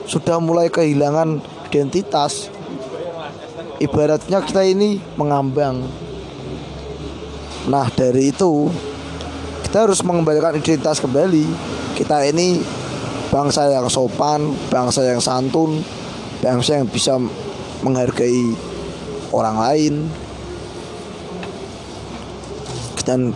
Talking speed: 80 wpm